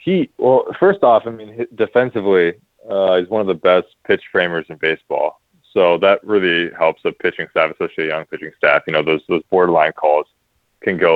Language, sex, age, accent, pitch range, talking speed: English, male, 20-39, American, 80-105 Hz, 195 wpm